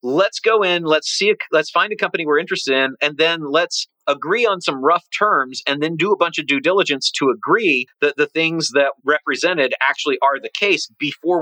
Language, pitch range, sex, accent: English, 145-205 Hz, male, American